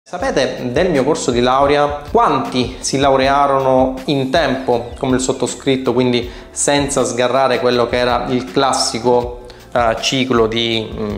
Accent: native